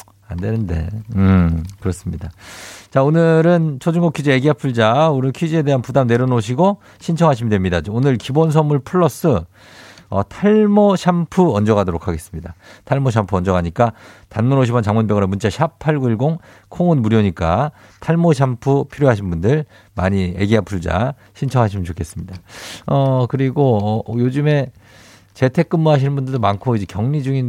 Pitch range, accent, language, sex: 100-145 Hz, native, Korean, male